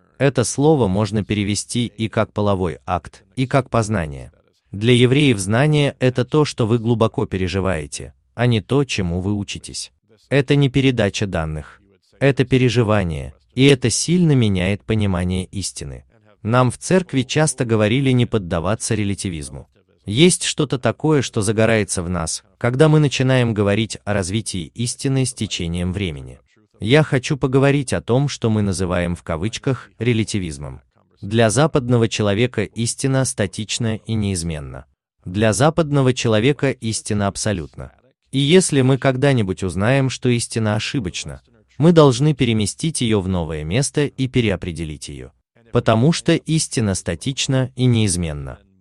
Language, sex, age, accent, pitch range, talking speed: Russian, male, 30-49, native, 95-130 Hz, 135 wpm